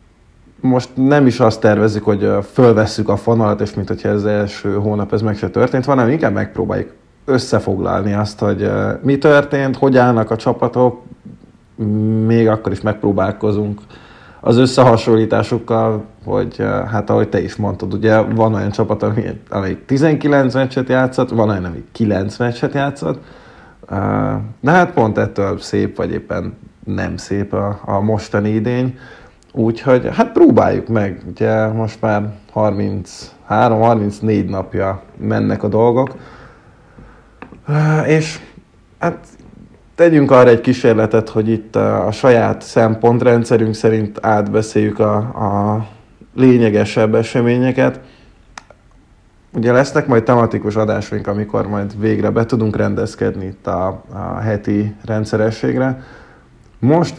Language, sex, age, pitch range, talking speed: Hungarian, male, 20-39, 105-125 Hz, 120 wpm